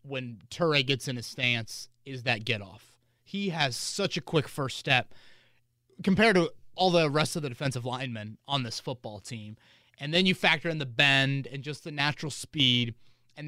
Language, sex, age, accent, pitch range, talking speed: English, male, 30-49, American, 120-150 Hz, 185 wpm